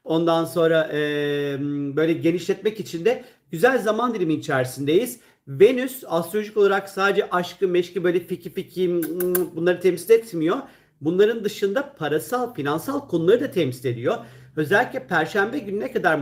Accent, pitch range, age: native, 170-200 Hz, 50-69